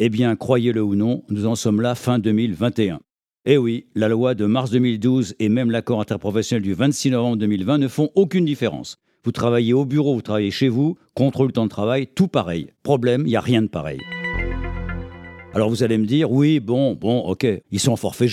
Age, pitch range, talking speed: 60-79, 105-135 Hz, 215 wpm